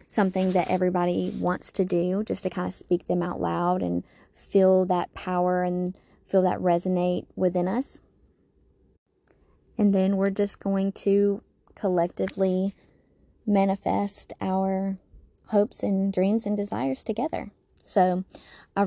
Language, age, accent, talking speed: English, 20-39, American, 130 wpm